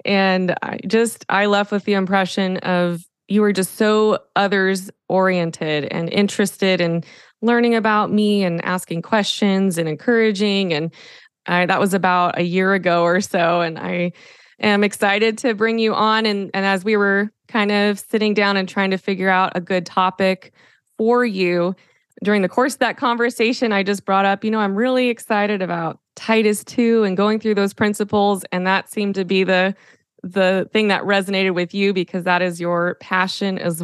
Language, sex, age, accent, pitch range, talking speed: English, female, 20-39, American, 180-215 Hz, 185 wpm